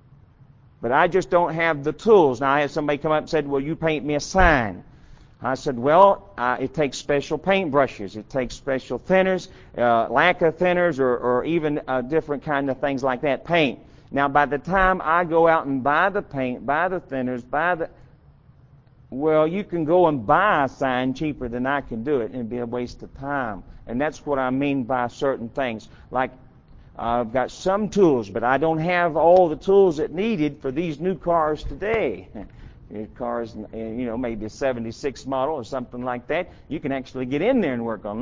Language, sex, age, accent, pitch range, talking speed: English, male, 50-69, American, 120-160 Hz, 205 wpm